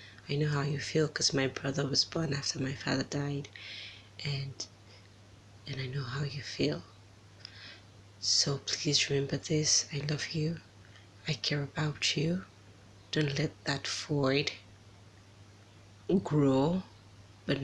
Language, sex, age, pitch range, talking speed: English, female, 20-39, 100-145 Hz, 130 wpm